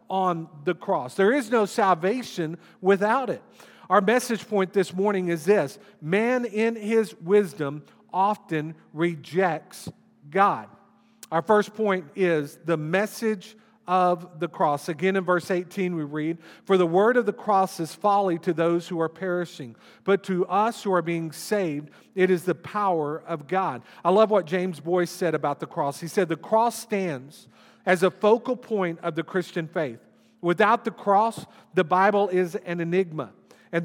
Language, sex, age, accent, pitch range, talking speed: English, male, 50-69, American, 170-205 Hz, 170 wpm